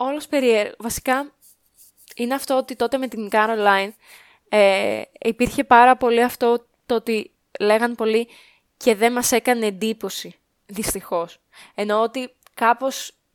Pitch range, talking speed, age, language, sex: 210-275 Hz, 120 wpm, 20-39, Greek, female